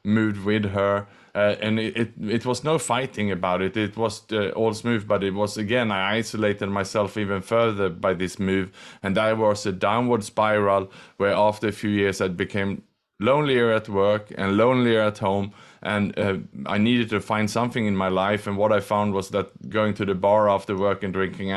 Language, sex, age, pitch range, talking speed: English, male, 20-39, 100-110 Hz, 205 wpm